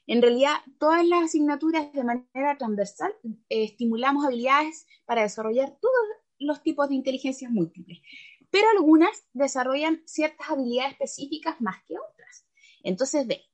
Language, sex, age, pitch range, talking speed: Spanish, female, 20-39, 200-310 Hz, 130 wpm